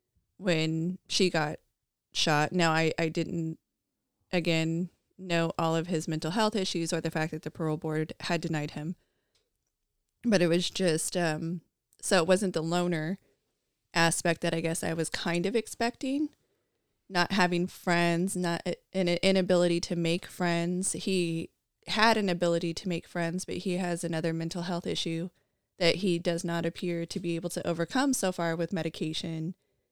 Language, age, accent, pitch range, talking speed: English, 20-39, American, 165-185 Hz, 165 wpm